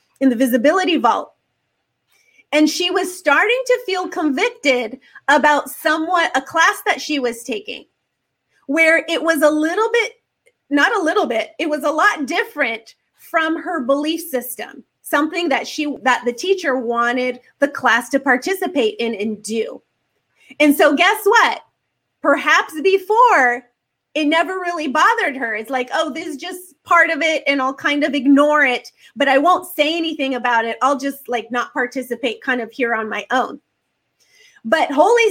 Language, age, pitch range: English, 30-49, 275-360 Hz